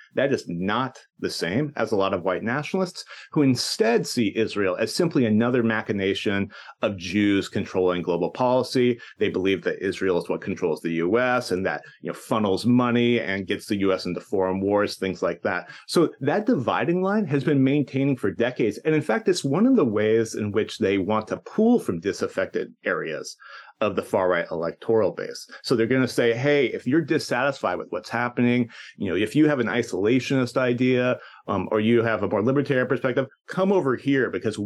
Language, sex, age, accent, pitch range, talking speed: English, male, 30-49, American, 105-140 Hz, 190 wpm